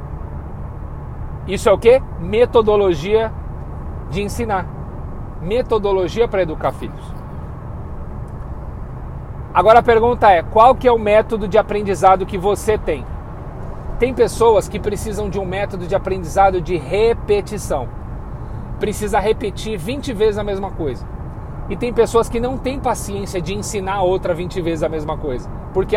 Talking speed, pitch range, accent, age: 140 wpm, 175-220 Hz, Brazilian, 40-59